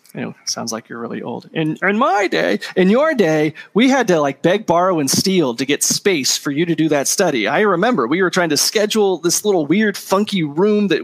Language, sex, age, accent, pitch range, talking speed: English, male, 30-49, American, 150-200 Hz, 235 wpm